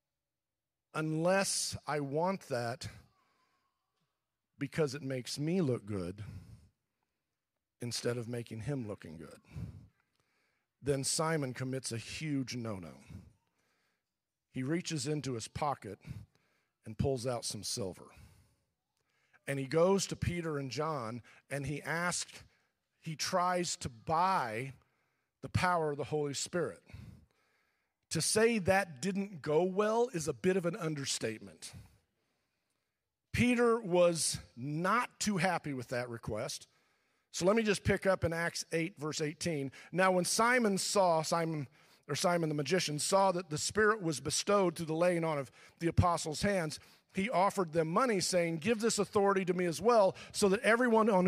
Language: English